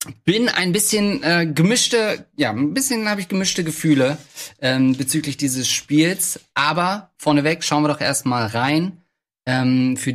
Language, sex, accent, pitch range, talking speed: German, male, German, 115-155 Hz, 150 wpm